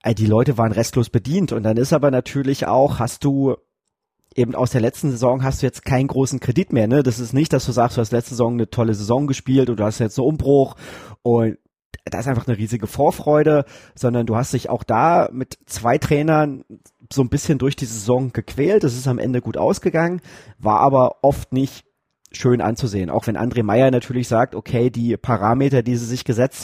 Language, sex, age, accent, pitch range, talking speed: German, male, 30-49, German, 115-135 Hz, 210 wpm